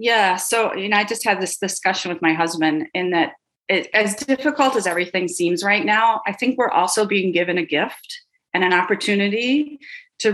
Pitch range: 185-230 Hz